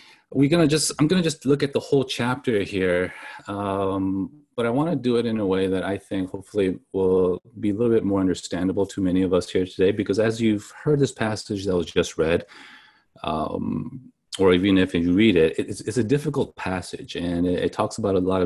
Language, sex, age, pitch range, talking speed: English, male, 40-59, 95-120 Hz, 220 wpm